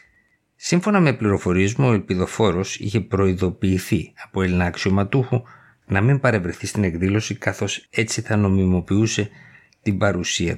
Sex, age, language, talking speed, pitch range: male, 50-69, Greek, 120 wpm, 95-120 Hz